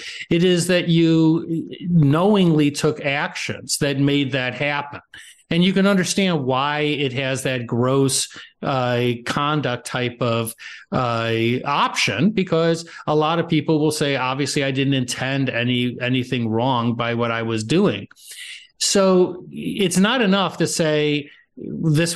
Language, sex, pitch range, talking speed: English, male, 135-180 Hz, 140 wpm